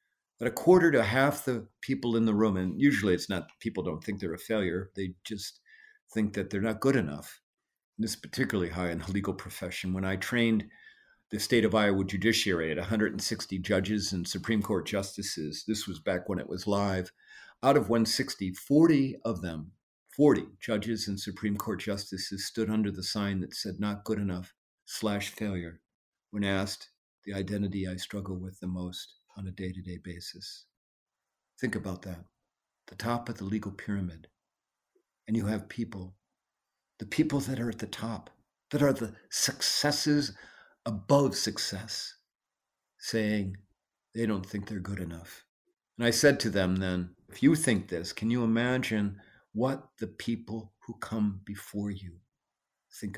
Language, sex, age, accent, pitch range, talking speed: English, male, 50-69, American, 95-115 Hz, 165 wpm